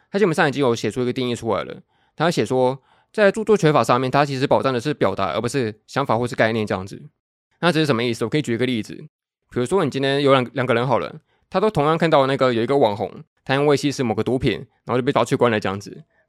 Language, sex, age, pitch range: Chinese, male, 20-39, 115-150 Hz